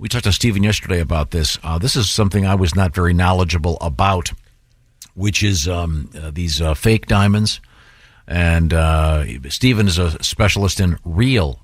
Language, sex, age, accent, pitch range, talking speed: English, male, 50-69, American, 85-110 Hz, 170 wpm